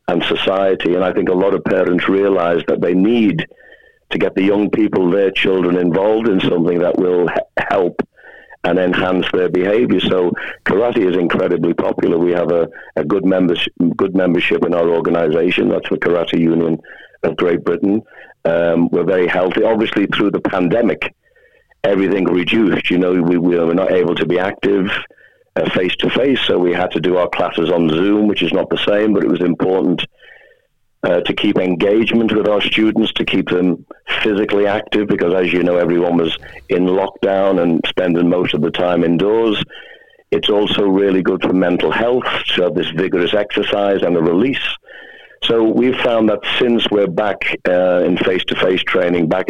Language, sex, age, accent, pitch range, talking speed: English, male, 50-69, British, 85-100 Hz, 175 wpm